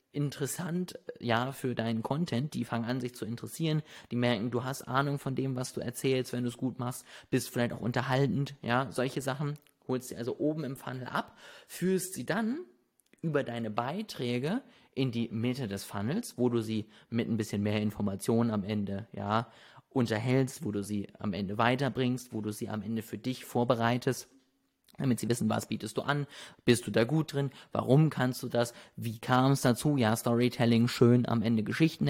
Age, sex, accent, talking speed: 30-49, male, German, 195 wpm